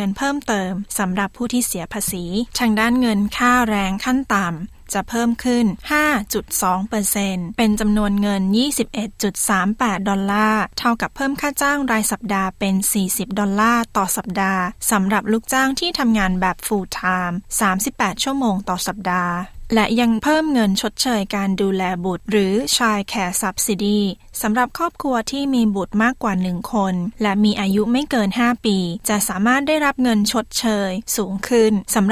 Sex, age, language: female, 20-39, Thai